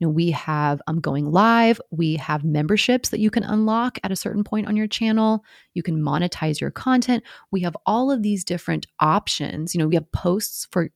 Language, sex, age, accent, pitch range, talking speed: English, female, 30-49, American, 155-215 Hz, 220 wpm